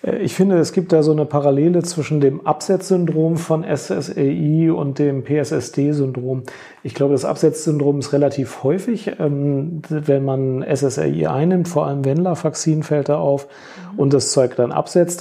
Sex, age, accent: male, 40-59, German